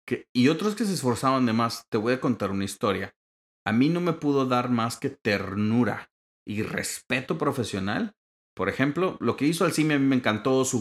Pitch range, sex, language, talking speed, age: 105-145 Hz, male, Spanish, 200 wpm, 40-59